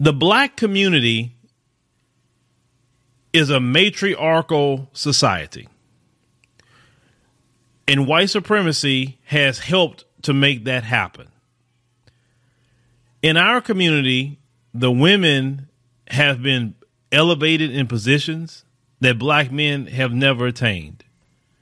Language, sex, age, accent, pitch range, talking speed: English, male, 40-59, American, 125-150 Hz, 90 wpm